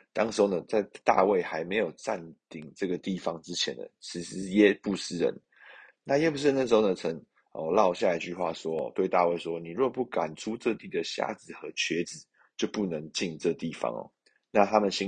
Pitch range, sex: 85-105 Hz, male